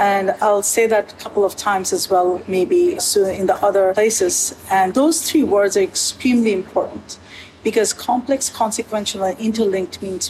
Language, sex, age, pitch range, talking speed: English, female, 50-69, 190-260 Hz, 170 wpm